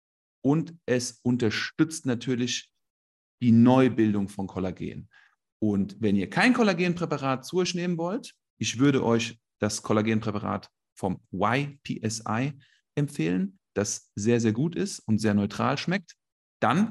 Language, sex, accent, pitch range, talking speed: German, male, German, 105-140 Hz, 125 wpm